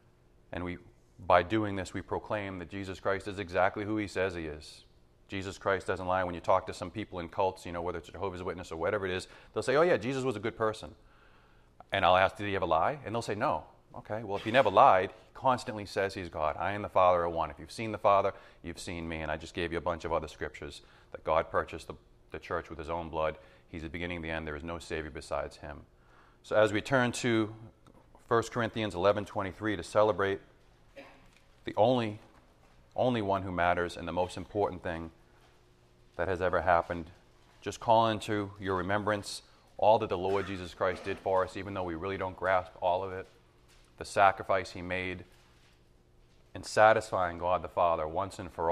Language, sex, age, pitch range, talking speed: English, male, 30-49, 75-100 Hz, 215 wpm